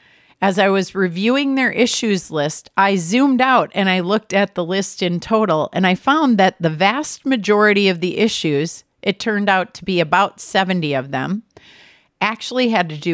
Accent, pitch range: American, 160-210 Hz